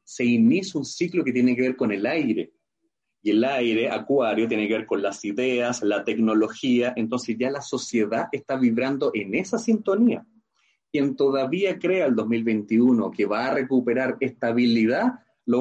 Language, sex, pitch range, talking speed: Spanish, male, 115-165 Hz, 165 wpm